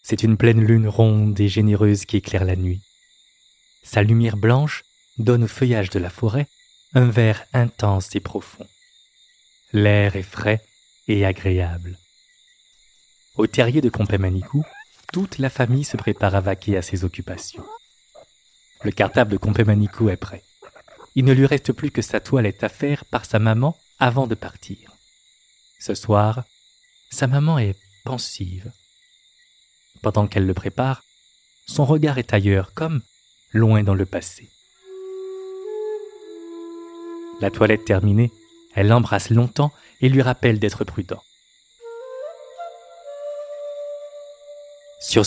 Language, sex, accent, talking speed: French, male, French, 130 wpm